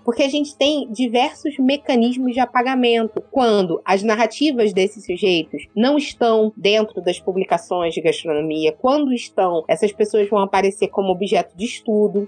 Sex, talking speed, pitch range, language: female, 145 wpm, 190-255 Hz, Portuguese